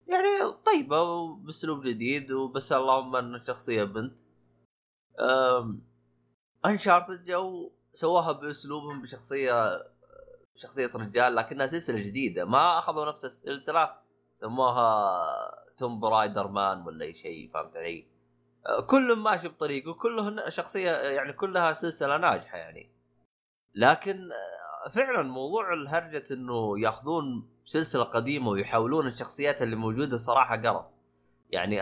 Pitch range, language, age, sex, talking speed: 105-165 Hz, Arabic, 20-39, male, 105 wpm